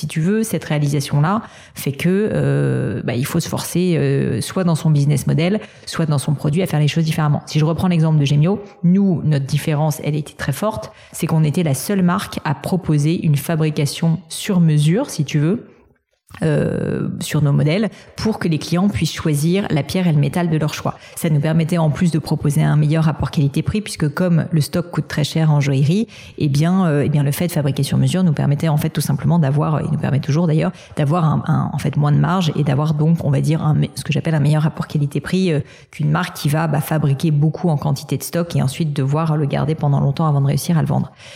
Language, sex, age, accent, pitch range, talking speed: French, female, 30-49, French, 145-170 Hz, 240 wpm